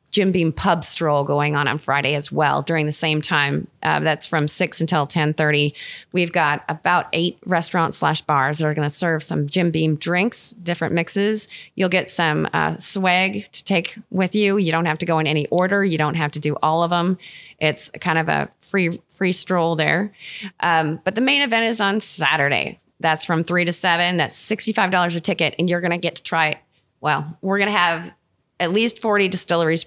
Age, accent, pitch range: 20-39, American, 155-185 Hz